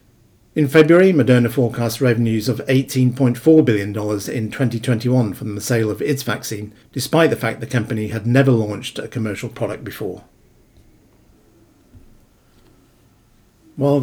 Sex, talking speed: male, 125 wpm